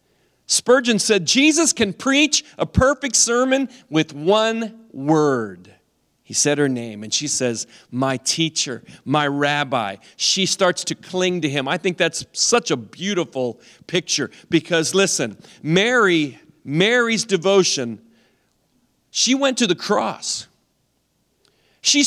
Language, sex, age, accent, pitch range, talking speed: English, male, 40-59, American, 160-240 Hz, 125 wpm